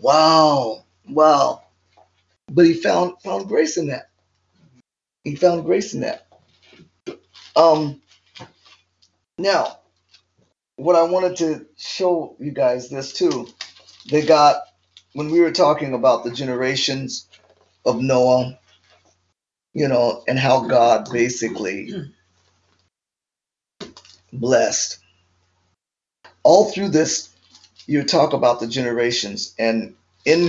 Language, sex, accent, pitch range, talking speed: English, male, American, 95-150 Hz, 105 wpm